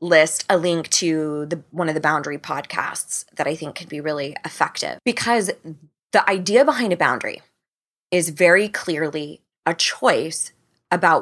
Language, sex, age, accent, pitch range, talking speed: English, female, 20-39, American, 150-175 Hz, 150 wpm